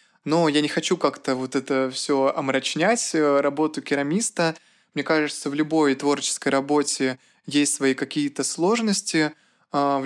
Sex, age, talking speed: male, 20-39, 130 wpm